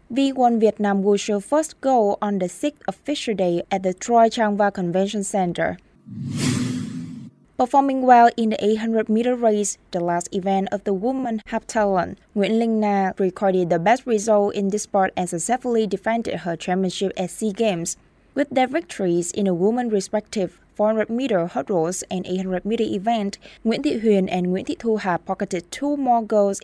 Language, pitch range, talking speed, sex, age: Vietnamese, 185-230 Hz, 160 wpm, female, 20-39